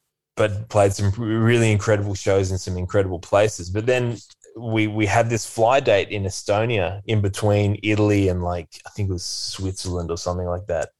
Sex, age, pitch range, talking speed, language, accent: male, 20-39, 90-105 Hz, 185 wpm, English, Australian